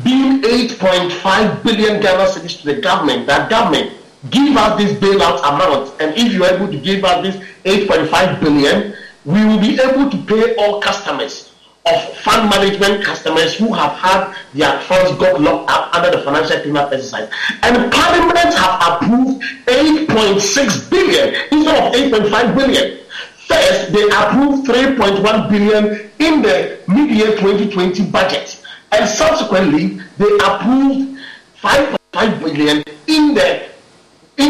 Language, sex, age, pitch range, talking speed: English, male, 40-59, 190-270 Hz, 140 wpm